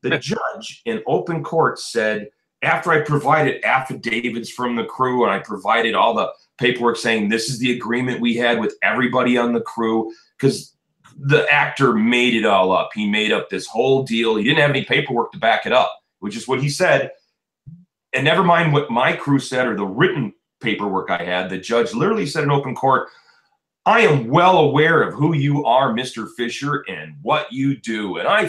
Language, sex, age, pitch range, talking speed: English, male, 30-49, 115-150 Hz, 200 wpm